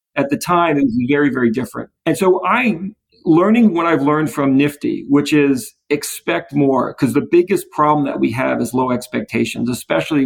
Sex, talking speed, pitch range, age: male, 185 wpm, 125-175 Hz, 40-59